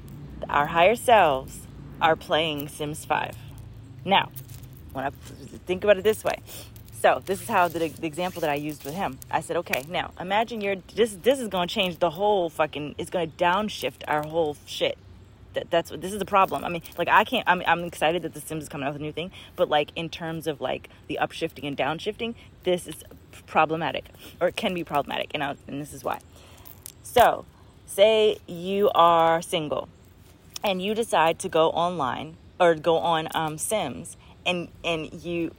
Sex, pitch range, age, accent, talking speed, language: female, 145-180 Hz, 20-39, American, 195 wpm, English